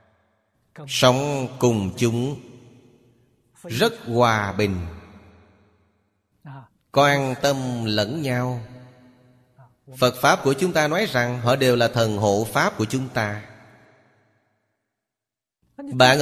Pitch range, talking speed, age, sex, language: 110-135 Hz, 100 wpm, 30-49, male, Vietnamese